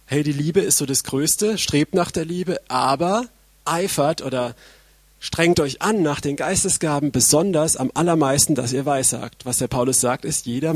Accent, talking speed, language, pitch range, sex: German, 180 wpm, German, 125-155 Hz, male